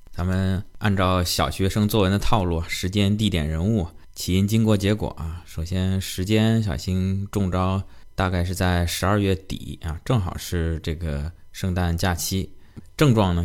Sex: male